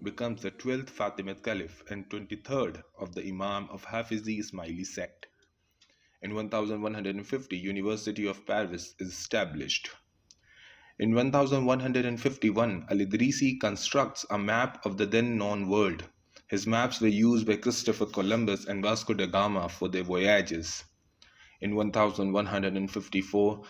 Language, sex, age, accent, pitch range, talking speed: English, male, 20-39, Indian, 95-115 Hz, 120 wpm